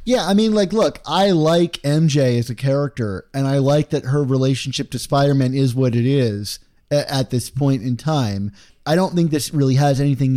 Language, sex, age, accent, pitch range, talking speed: English, male, 30-49, American, 130-165 Hz, 205 wpm